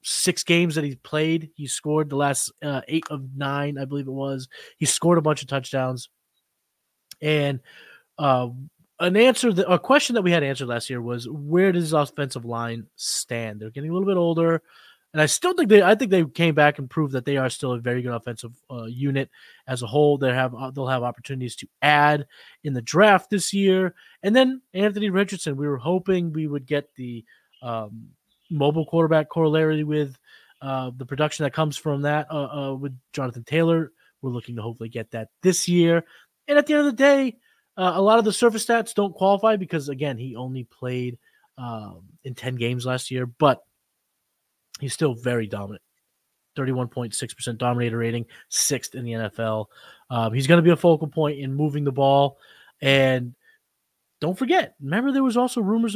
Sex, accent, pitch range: male, American, 125-175 Hz